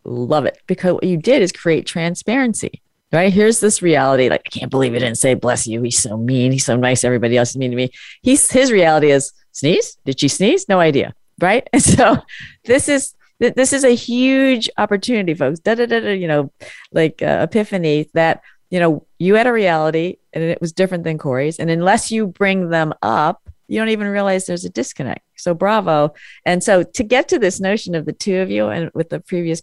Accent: American